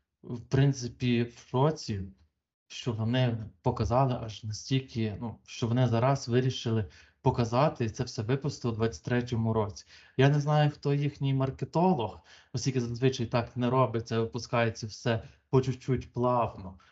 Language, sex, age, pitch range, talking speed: Ukrainian, male, 20-39, 115-130 Hz, 130 wpm